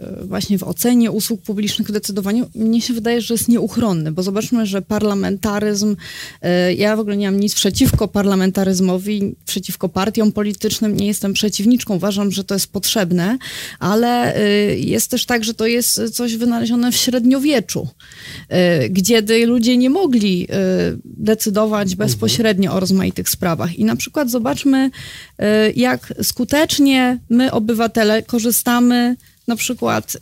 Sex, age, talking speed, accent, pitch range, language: female, 30-49, 135 wpm, native, 200-245 Hz, Polish